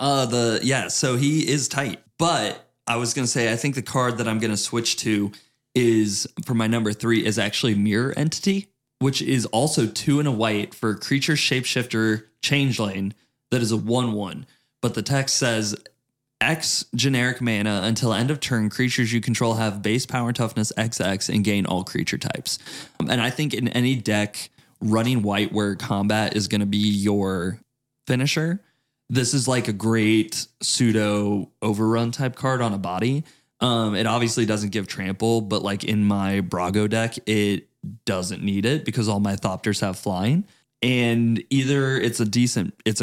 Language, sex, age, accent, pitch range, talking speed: English, male, 20-39, American, 105-125 Hz, 180 wpm